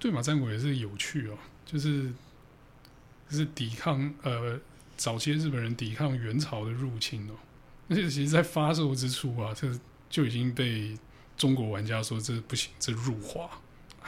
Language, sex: Chinese, male